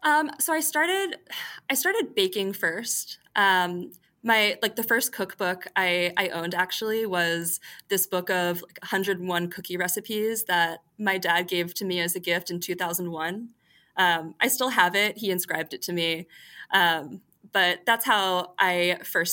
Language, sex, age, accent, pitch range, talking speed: English, female, 20-39, American, 170-210 Hz, 160 wpm